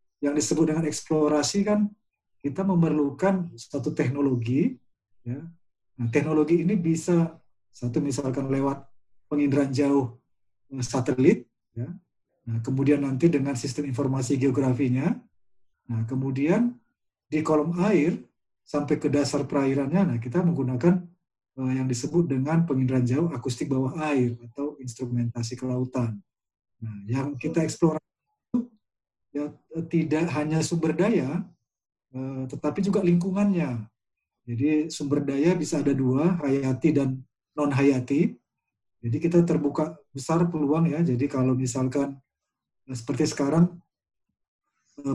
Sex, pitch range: male, 130-155 Hz